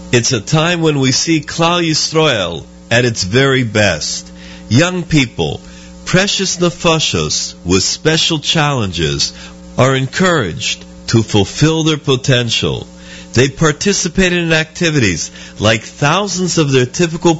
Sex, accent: male, American